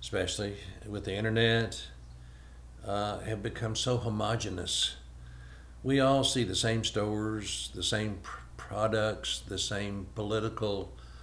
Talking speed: 110 wpm